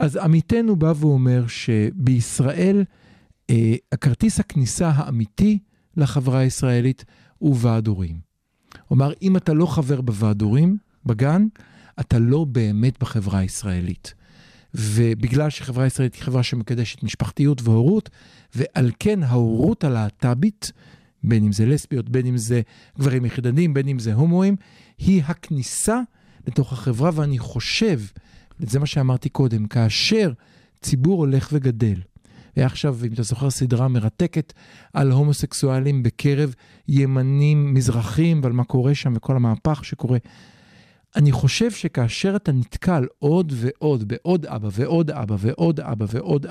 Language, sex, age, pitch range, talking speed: Hebrew, male, 50-69, 120-155 Hz, 125 wpm